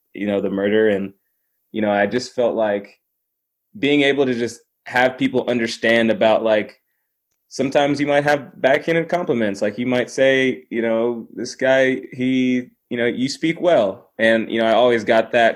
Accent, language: American, English